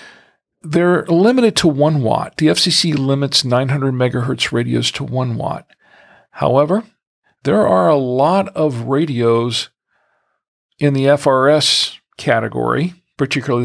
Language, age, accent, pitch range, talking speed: English, 50-69, American, 125-165 Hz, 115 wpm